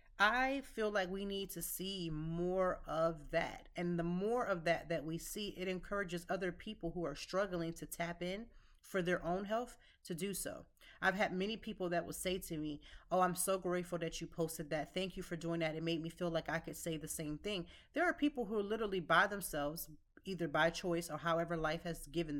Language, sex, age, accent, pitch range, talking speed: English, female, 30-49, American, 160-190 Hz, 225 wpm